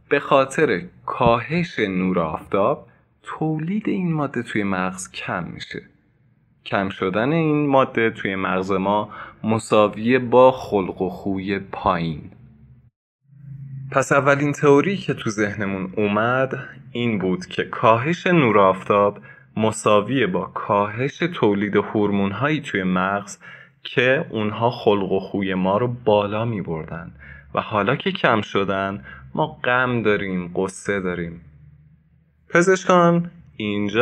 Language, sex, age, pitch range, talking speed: Persian, male, 20-39, 100-140 Hz, 120 wpm